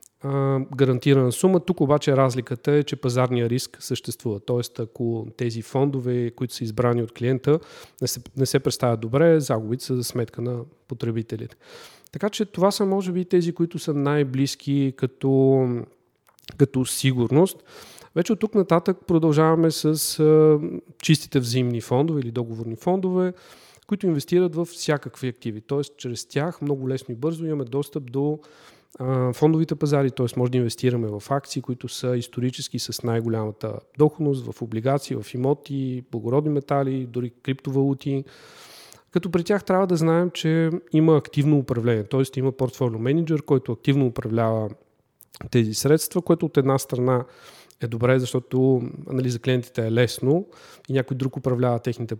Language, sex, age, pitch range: Bulgarian, male, 40-59, 125-150 Hz